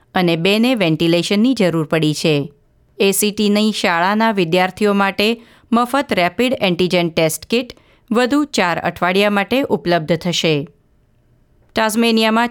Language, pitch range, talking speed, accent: Gujarati, 180-230 Hz, 110 wpm, native